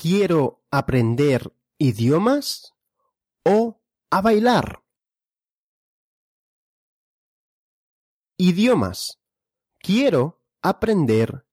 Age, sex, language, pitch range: 30-49, male, Russian, 125-200 Hz